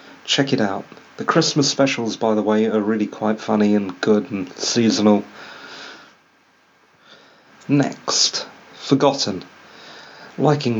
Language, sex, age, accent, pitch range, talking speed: English, male, 40-59, British, 105-135 Hz, 110 wpm